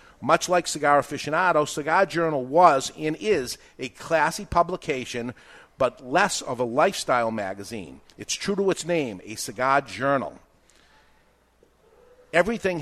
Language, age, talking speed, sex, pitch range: English, 50-69, 125 wpm, male, 130-165 Hz